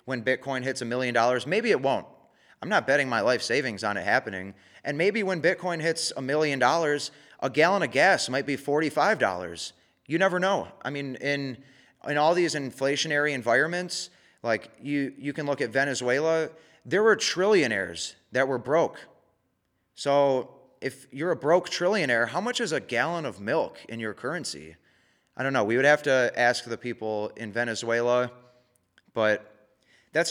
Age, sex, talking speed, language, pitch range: 30-49, male, 170 wpm, English, 120-150 Hz